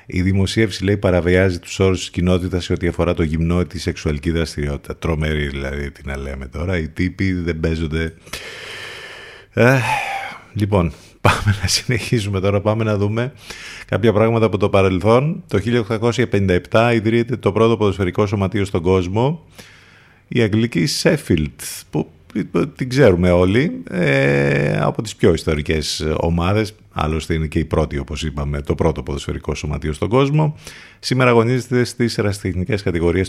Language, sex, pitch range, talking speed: Greek, male, 85-110 Hz, 140 wpm